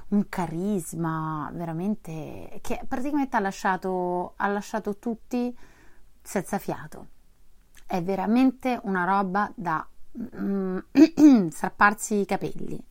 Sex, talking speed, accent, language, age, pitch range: female, 100 wpm, native, Italian, 30-49, 180-250 Hz